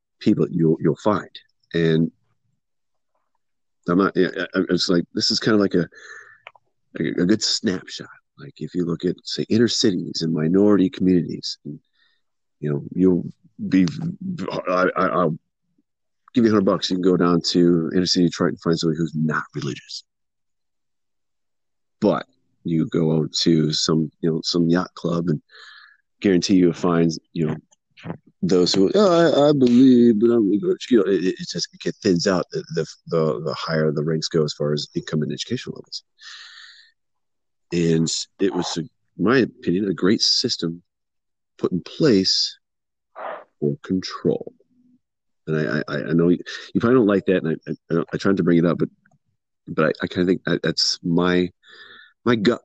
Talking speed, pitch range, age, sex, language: 170 wpm, 80-95 Hz, 40-59, male, English